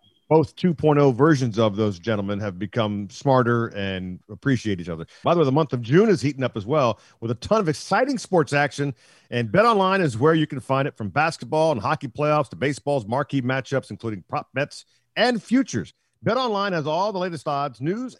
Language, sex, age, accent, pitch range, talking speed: English, male, 50-69, American, 110-160 Hz, 210 wpm